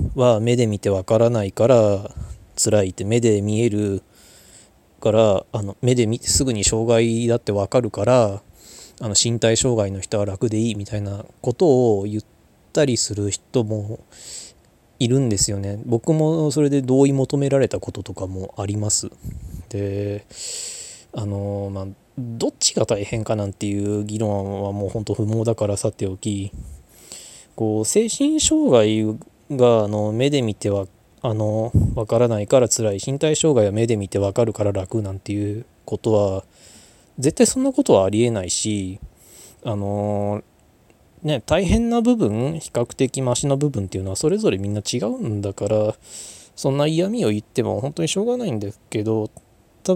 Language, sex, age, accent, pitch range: Japanese, male, 20-39, native, 100-125 Hz